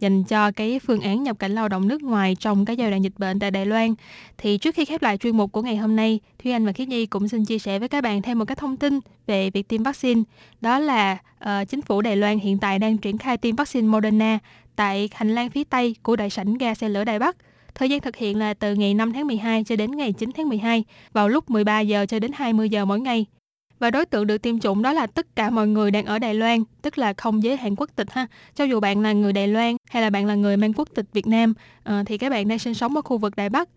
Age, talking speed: 10-29, 280 wpm